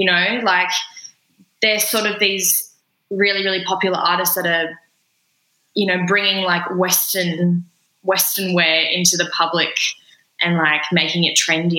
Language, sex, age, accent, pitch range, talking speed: English, female, 10-29, Australian, 170-200 Hz, 145 wpm